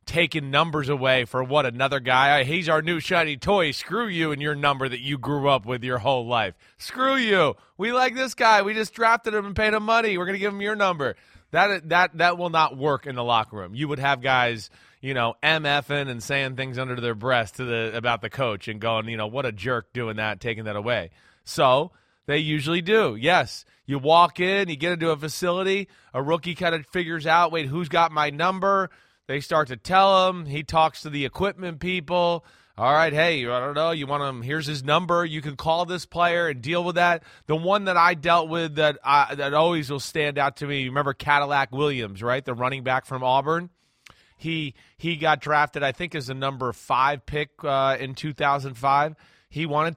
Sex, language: male, English